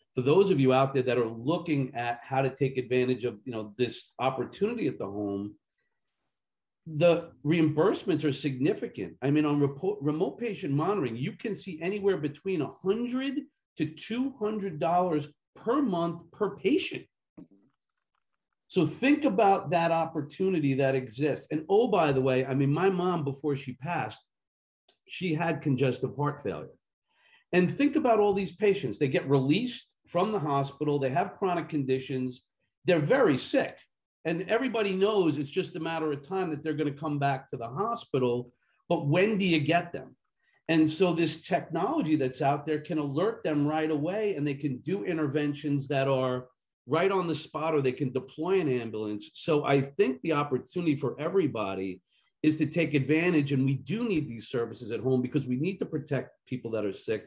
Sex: male